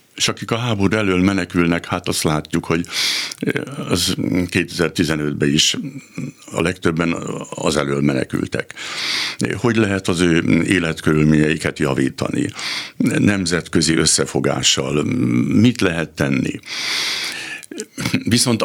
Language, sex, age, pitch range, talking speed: Hungarian, male, 60-79, 75-95 Hz, 95 wpm